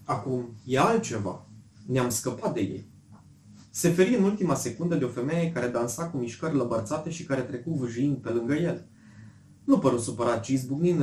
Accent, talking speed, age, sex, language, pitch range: native, 175 wpm, 20-39, male, Romanian, 115-150 Hz